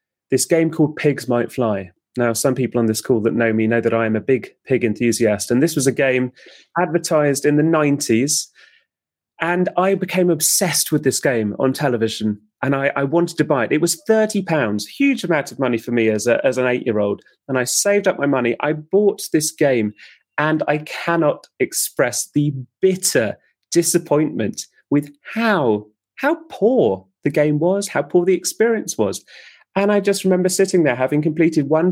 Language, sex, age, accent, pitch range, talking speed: English, male, 30-49, British, 130-175 Hz, 190 wpm